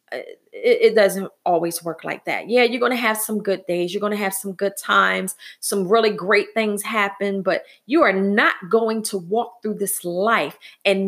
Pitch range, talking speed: 205-270 Hz, 200 wpm